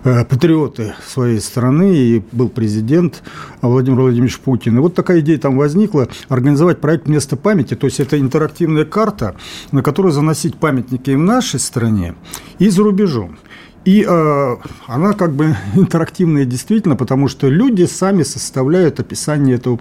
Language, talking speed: Russian, 150 wpm